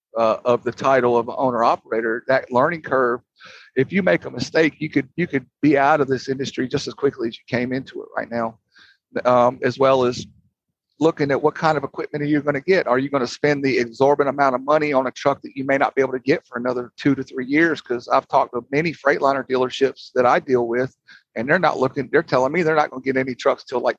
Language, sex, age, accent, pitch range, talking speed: English, male, 50-69, American, 130-150 Hz, 250 wpm